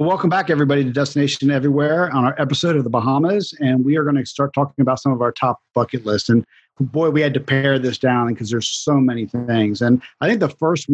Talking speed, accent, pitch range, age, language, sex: 240 wpm, American, 120-140 Hz, 40-59, English, male